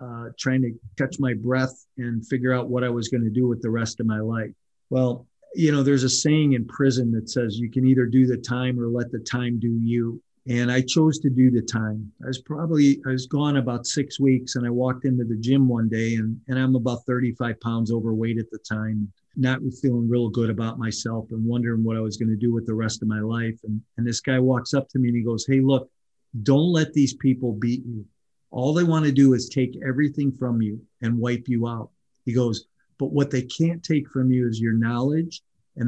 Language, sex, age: English, male, 40-59